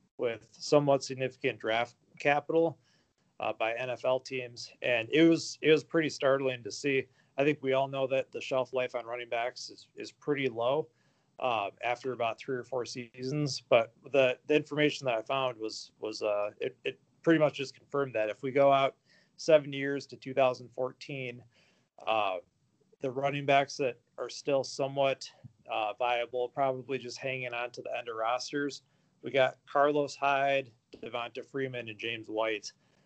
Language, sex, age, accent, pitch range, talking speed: English, male, 30-49, American, 120-140 Hz, 170 wpm